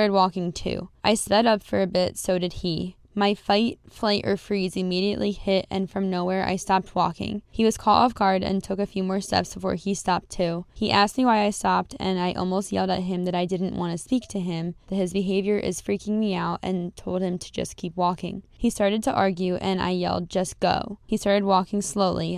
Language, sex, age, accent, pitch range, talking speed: English, female, 10-29, American, 180-205 Hz, 230 wpm